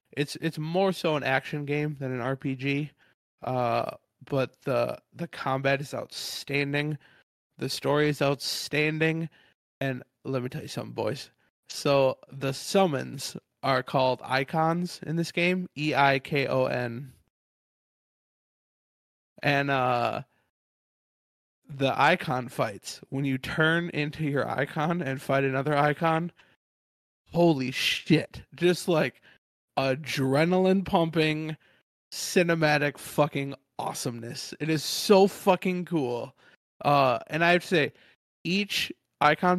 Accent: American